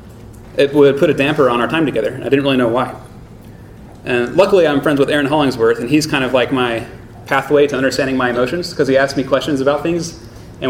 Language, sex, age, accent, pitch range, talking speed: English, male, 30-49, American, 120-140 Hz, 225 wpm